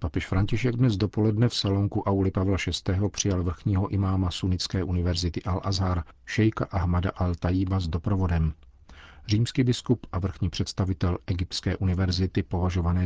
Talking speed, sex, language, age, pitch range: 135 wpm, male, Czech, 40-59, 90-100 Hz